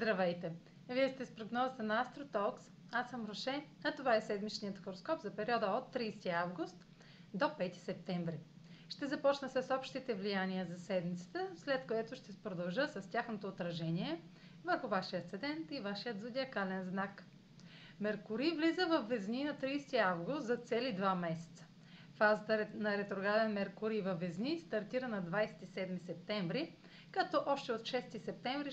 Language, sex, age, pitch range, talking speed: Bulgarian, female, 30-49, 180-250 Hz, 145 wpm